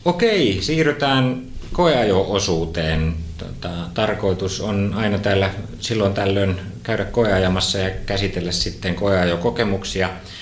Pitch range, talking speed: 80-95 Hz, 90 wpm